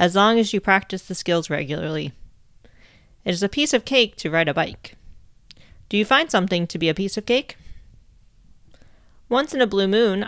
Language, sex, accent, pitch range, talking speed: English, female, American, 150-210 Hz, 195 wpm